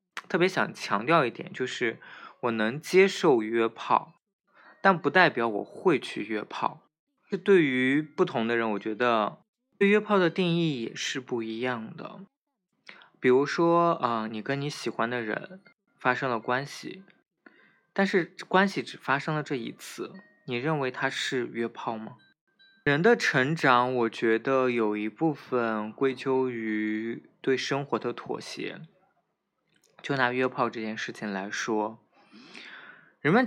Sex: male